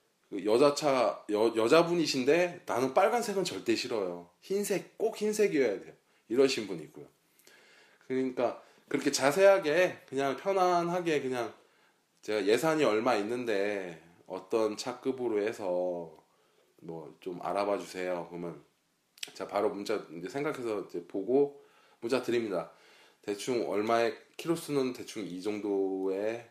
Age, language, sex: 20-39, Korean, male